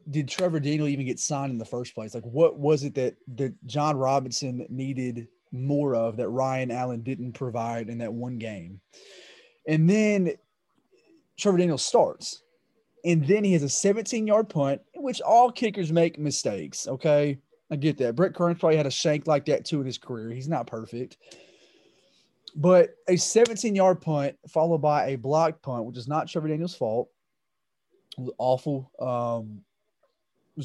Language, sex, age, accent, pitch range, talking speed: English, male, 20-39, American, 125-175 Hz, 170 wpm